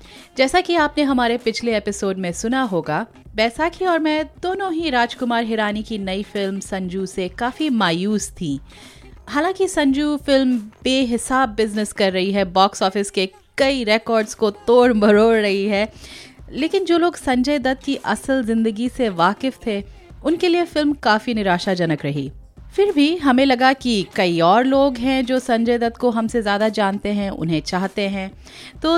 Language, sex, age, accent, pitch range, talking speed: Hindi, female, 30-49, native, 195-265 Hz, 165 wpm